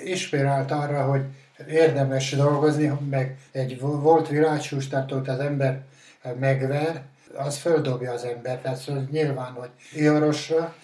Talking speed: 115 wpm